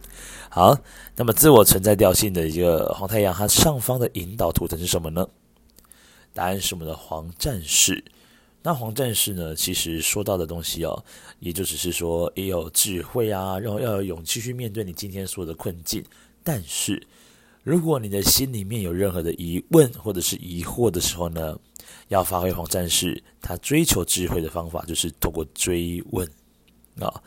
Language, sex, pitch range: Chinese, male, 85-110 Hz